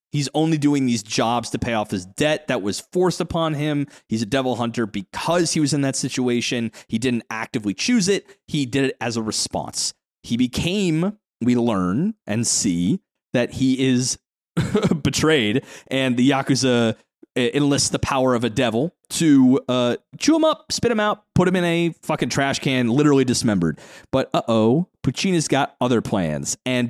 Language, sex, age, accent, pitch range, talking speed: English, male, 30-49, American, 115-160 Hz, 180 wpm